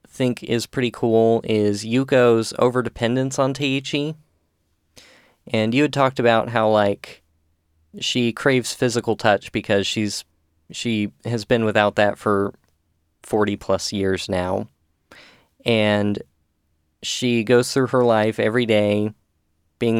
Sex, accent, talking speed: male, American, 125 wpm